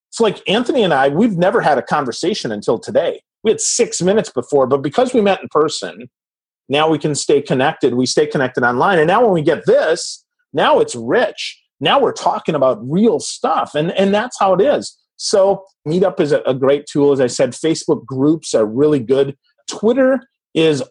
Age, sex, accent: 40-59, male, American